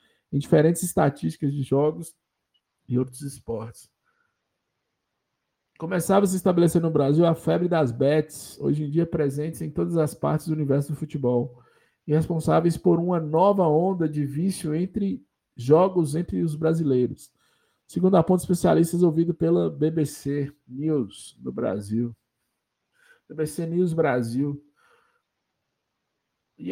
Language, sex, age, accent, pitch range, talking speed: Portuguese, male, 50-69, Brazilian, 150-195 Hz, 125 wpm